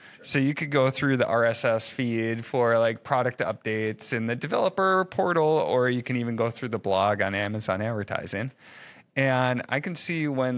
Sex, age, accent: male, 30-49, American